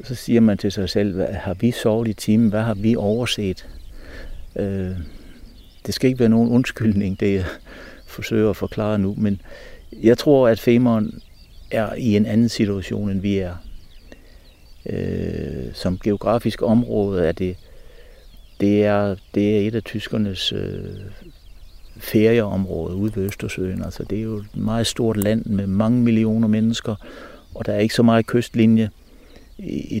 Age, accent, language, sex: 60-79, native, Danish, male